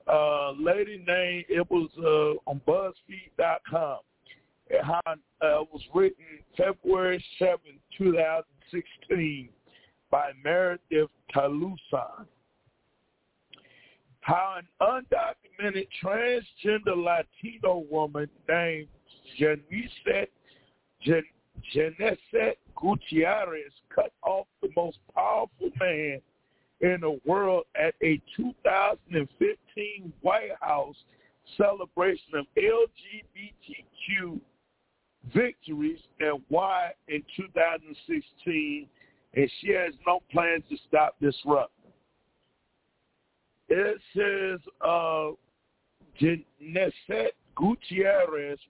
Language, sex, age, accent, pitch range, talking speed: English, male, 50-69, American, 155-220 Hz, 85 wpm